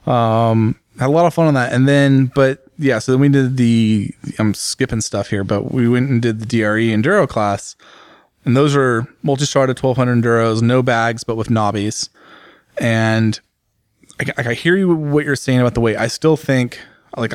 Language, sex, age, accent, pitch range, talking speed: English, male, 20-39, American, 105-125 Hz, 195 wpm